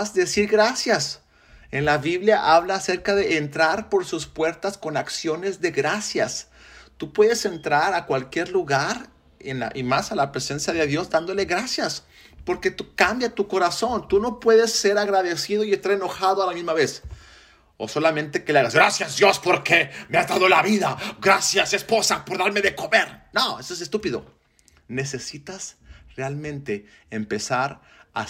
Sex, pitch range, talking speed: male, 120-190 Hz, 165 wpm